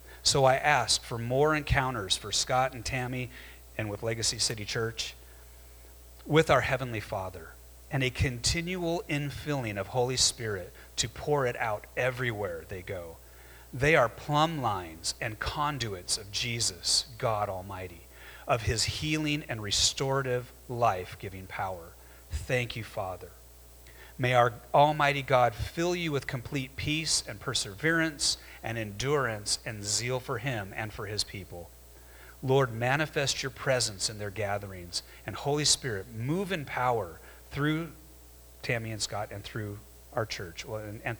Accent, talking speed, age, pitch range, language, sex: American, 140 wpm, 40-59, 90-135 Hz, English, male